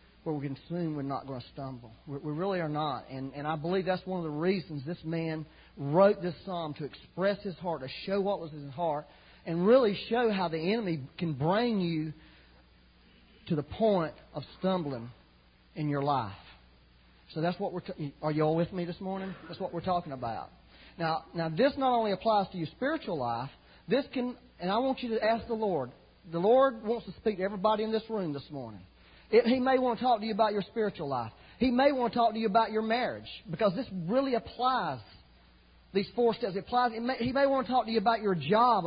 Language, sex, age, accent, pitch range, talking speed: English, male, 40-59, American, 140-215 Hz, 225 wpm